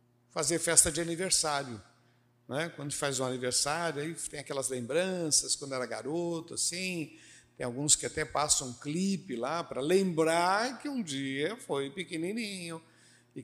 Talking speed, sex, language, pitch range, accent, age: 155 wpm, male, Portuguese, 125-190 Hz, Brazilian, 60-79